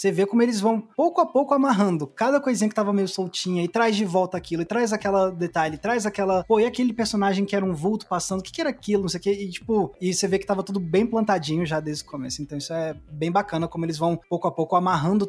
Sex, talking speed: male, 280 wpm